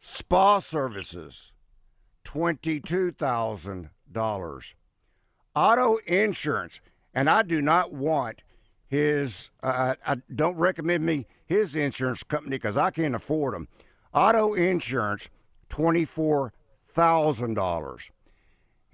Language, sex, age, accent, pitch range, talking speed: English, male, 60-79, American, 110-165 Hz, 80 wpm